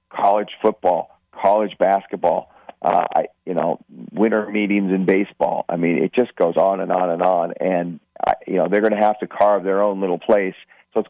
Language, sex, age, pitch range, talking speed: English, male, 40-59, 90-105 Hz, 200 wpm